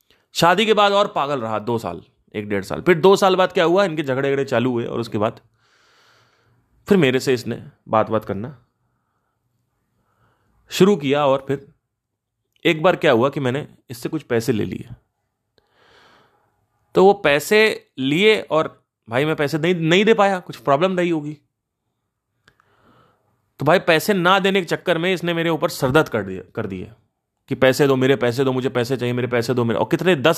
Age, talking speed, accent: 30-49, 185 wpm, native